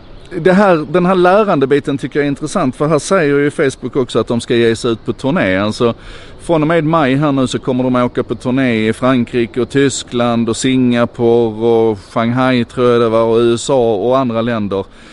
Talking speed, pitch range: 220 wpm, 100-130 Hz